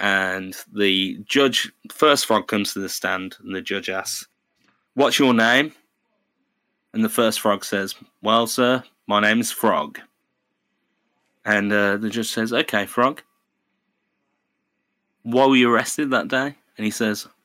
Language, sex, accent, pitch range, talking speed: English, male, British, 100-125 Hz, 150 wpm